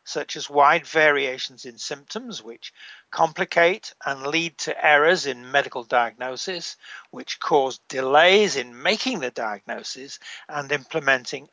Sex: male